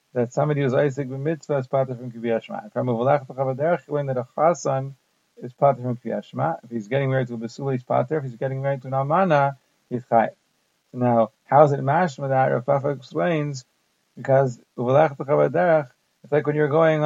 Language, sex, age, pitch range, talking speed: English, male, 40-59, 130-150 Hz, 195 wpm